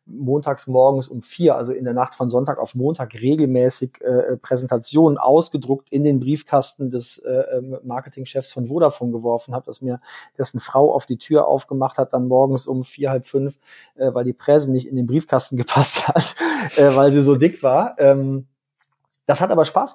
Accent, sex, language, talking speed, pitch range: German, male, German, 185 wpm, 125-140 Hz